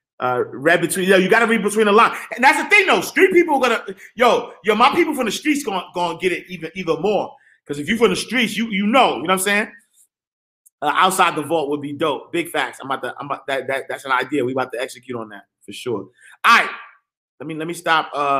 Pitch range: 135-215 Hz